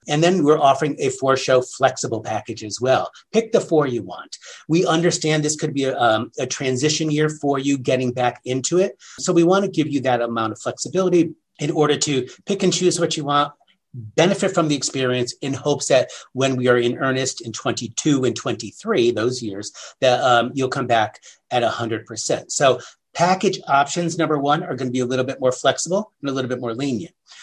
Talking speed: 205 wpm